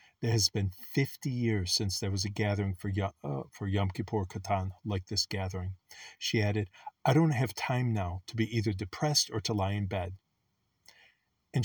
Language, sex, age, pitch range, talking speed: English, male, 40-59, 95-120 Hz, 190 wpm